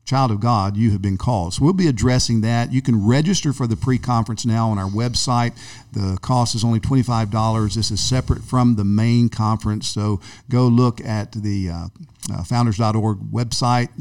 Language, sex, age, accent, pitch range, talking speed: English, male, 50-69, American, 105-125 Hz, 185 wpm